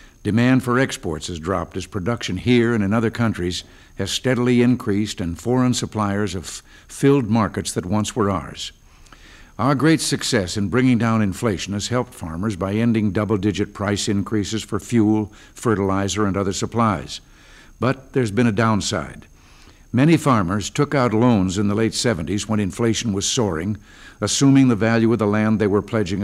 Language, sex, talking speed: English, male, 165 wpm